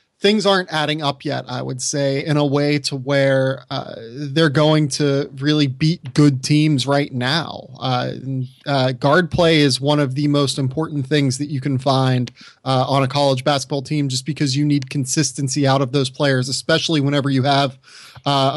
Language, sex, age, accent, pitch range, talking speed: English, male, 30-49, American, 135-155 Hz, 185 wpm